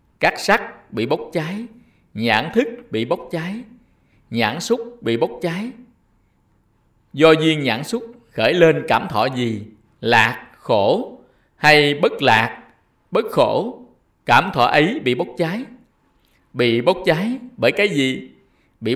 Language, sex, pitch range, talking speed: Vietnamese, male, 120-180 Hz, 140 wpm